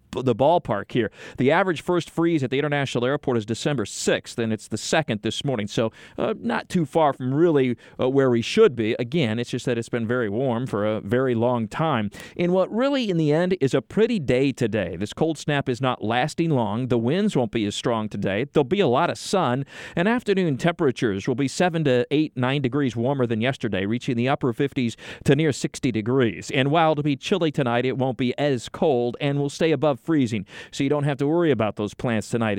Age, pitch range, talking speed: 40-59, 120-150 Hz, 225 wpm